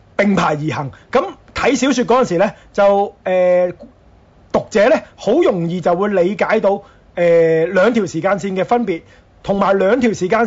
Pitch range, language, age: 170-240 Hz, Chinese, 30-49